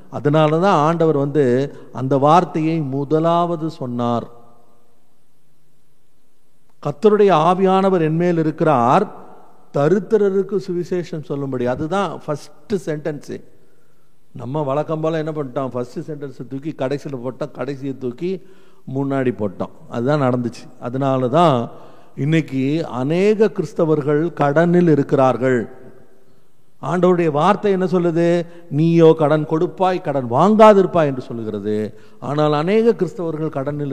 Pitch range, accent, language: 125-160 Hz, native, Tamil